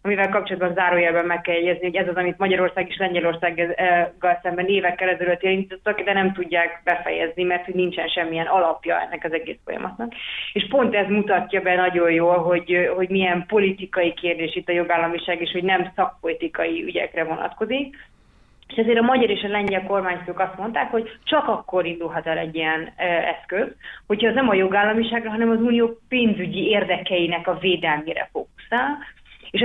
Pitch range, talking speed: 175-210 Hz, 165 wpm